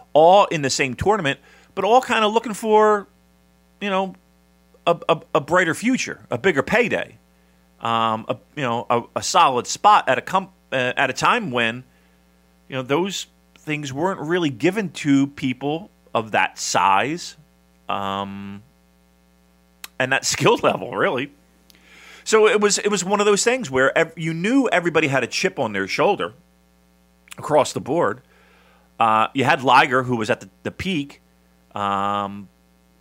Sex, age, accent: male, 40-59, American